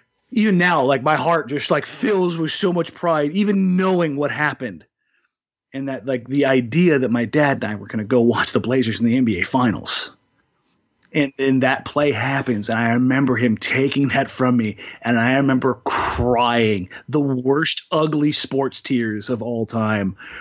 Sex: male